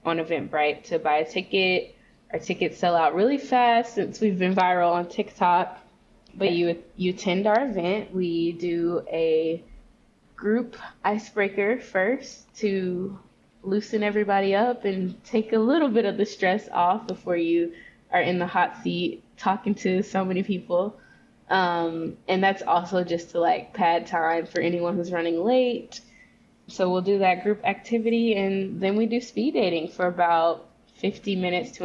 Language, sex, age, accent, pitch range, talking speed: English, female, 20-39, American, 170-215 Hz, 160 wpm